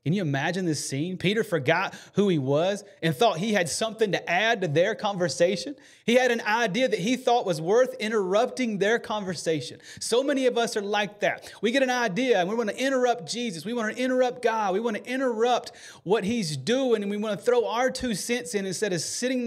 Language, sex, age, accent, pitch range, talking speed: English, male, 30-49, American, 180-235 Hz, 225 wpm